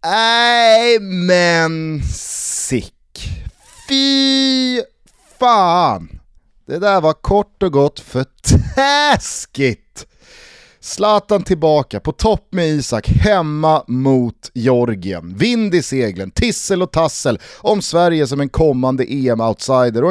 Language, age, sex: Swedish, 30-49, male